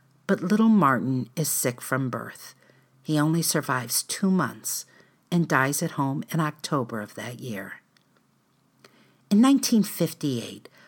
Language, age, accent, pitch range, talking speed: English, 50-69, American, 120-185 Hz, 125 wpm